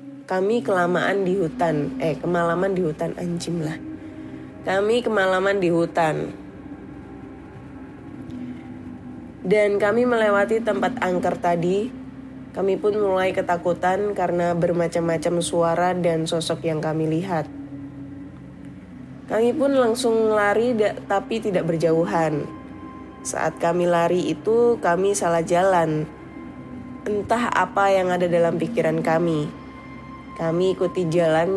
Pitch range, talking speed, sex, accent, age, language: 165-210 Hz, 105 wpm, female, native, 20-39, Indonesian